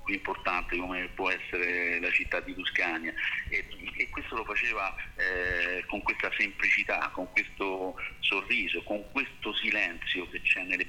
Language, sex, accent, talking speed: Italian, male, native, 145 wpm